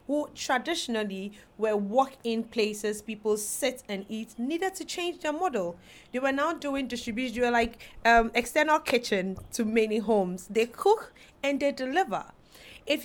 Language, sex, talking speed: English, female, 150 wpm